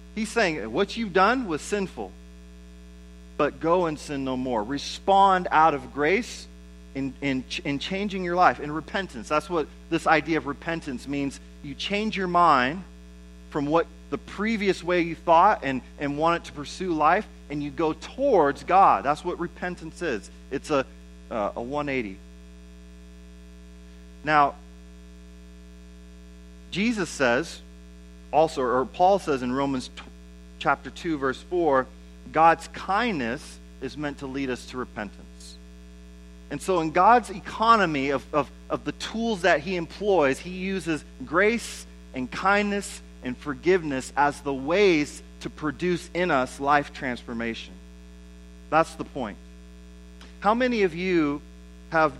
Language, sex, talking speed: English, male, 140 wpm